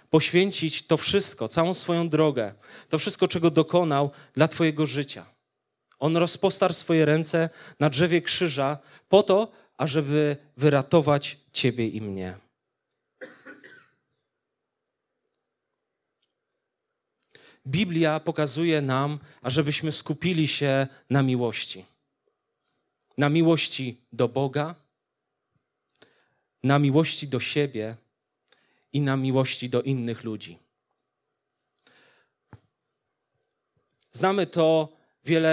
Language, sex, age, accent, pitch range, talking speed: Polish, male, 30-49, native, 135-170 Hz, 90 wpm